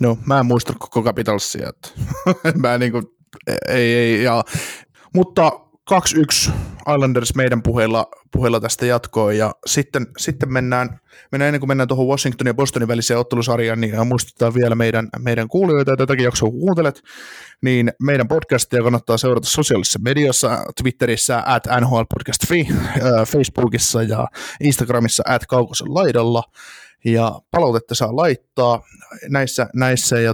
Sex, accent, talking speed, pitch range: male, native, 135 wpm, 120-140 Hz